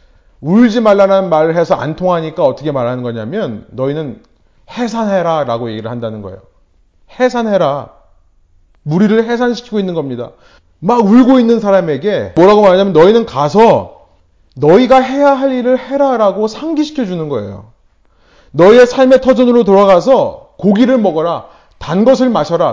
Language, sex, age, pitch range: Korean, male, 30-49, 155-235 Hz